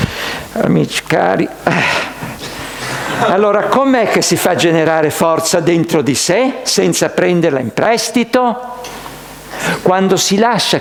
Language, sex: Italian, male